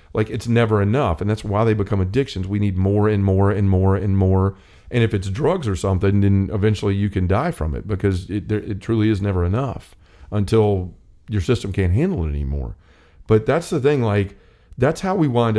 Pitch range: 95-115 Hz